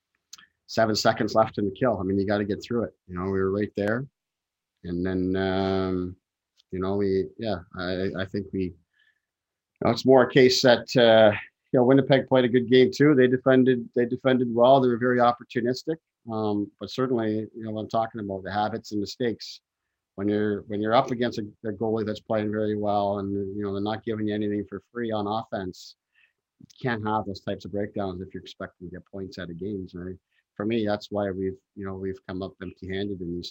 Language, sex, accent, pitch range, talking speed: English, male, American, 95-110 Hz, 225 wpm